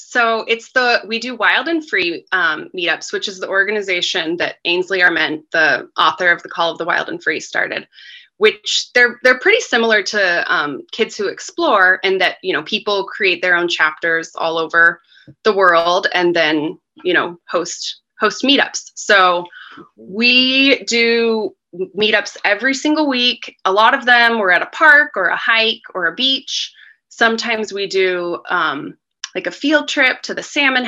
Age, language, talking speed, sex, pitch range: 20-39, English, 175 wpm, female, 180-240 Hz